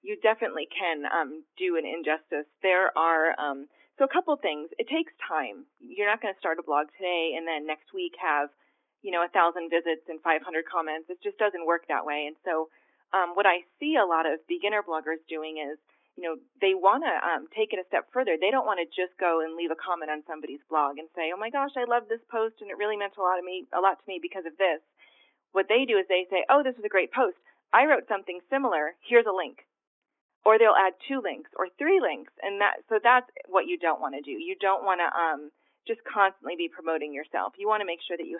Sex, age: female, 30-49